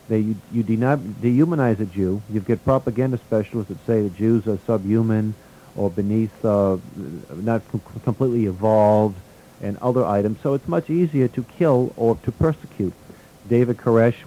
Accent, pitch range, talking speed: American, 105-125 Hz, 160 wpm